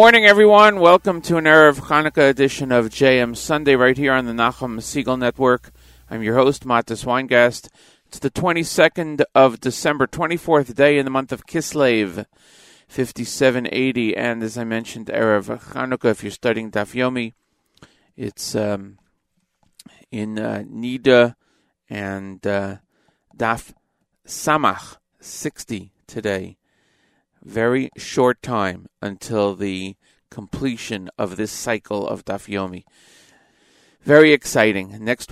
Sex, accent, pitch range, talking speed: male, American, 110-140 Hz, 120 wpm